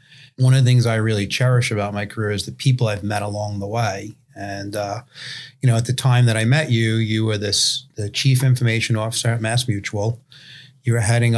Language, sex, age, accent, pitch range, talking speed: English, male, 30-49, American, 105-125 Hz, 220 wpm